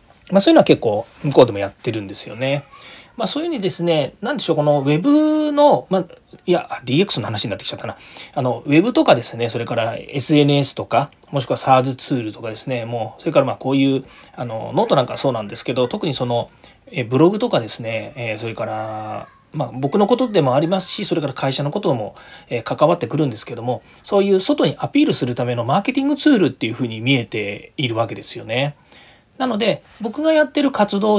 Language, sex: Japanese, male